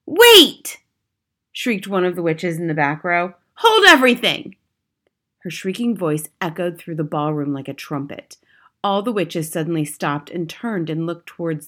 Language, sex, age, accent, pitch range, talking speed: English, female, 30-49, American, 175-280 Hz, 165 wpm